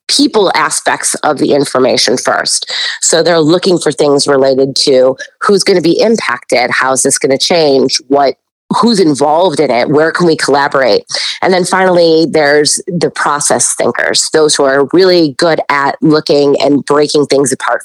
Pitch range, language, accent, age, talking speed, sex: 150-190 Hz, English, American, 30-49, 170 wpm, female